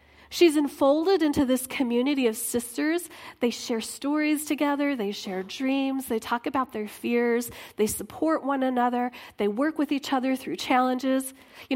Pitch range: 235-310 Hz